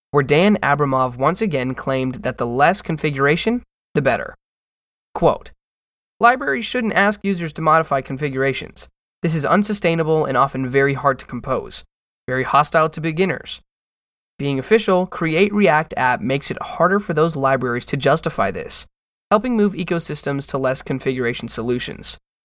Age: 20-39